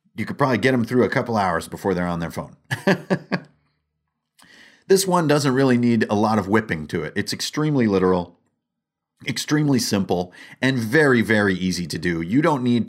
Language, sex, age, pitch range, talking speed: English, male, 30-49, 95-125 Hz, 180 wpm